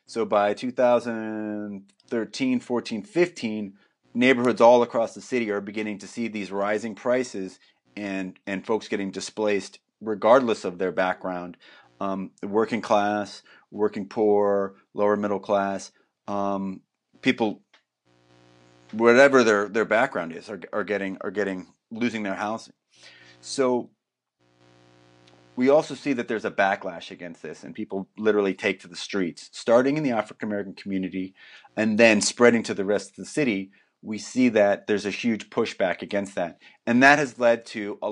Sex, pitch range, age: male, 95-110 Hz, 30-49